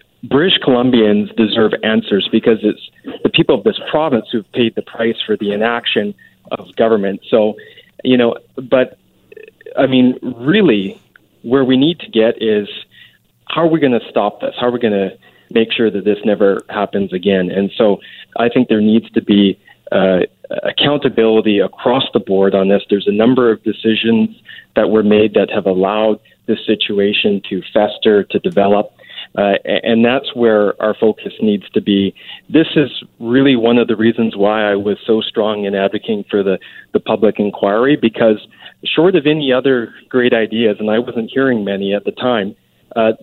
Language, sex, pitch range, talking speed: English, male, 105-130 Hz, 180 wpm